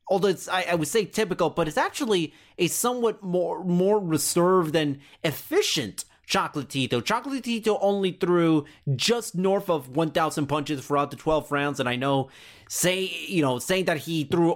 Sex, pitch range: male, 140-195 Hz